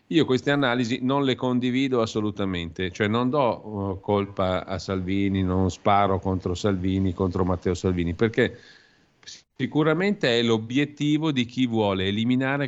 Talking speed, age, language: 135 wpm, 50-69, Italian